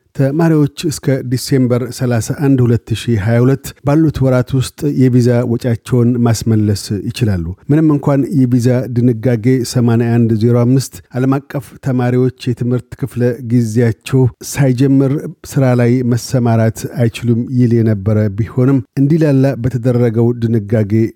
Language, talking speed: Amharic, 95 wpm